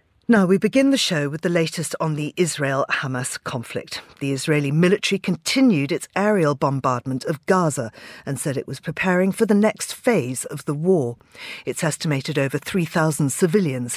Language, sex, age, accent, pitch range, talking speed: English, female, 50-69, British, 145-205 Hz, 165 wpm